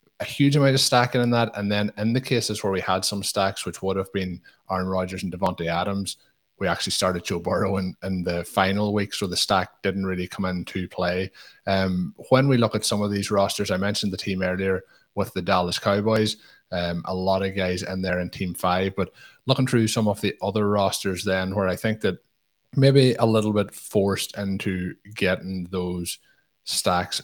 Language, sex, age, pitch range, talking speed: English, male, 20-39, 90-105 Hz, 205 wpm